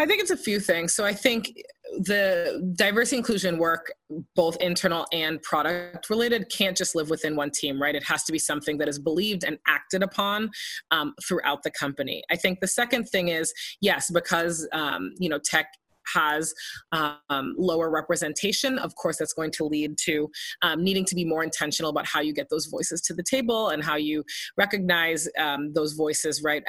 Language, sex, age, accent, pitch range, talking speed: English, female, 20-39, American, 155-195 Hz, 195 wpm